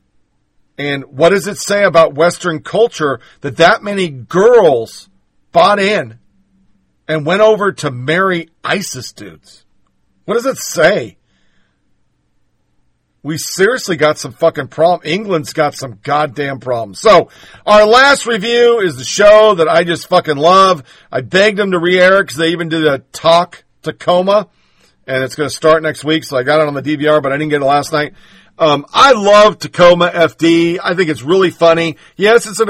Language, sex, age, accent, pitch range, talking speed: English, male, 50-69, American, 145-195 Hz, 175 wpm